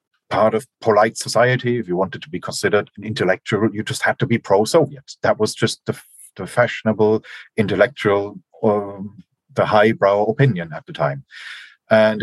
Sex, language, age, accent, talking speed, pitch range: male, English, 40-59, German, 160 wpm, 95-120 Hz